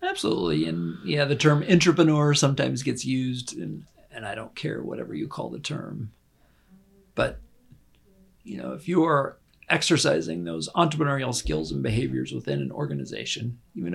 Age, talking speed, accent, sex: 40-59, 145 wpm, American, male